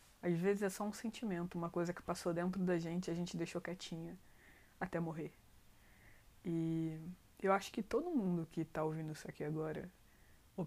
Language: Portuguese